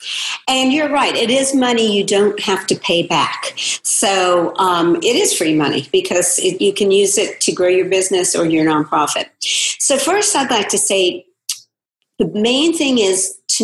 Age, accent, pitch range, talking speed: 50-69, American, 180-285 Hz, 200 wpm